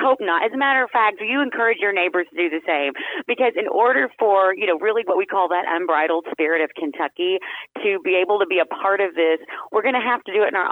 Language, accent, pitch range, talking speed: English, American, 165-220 Hz, 270 wpm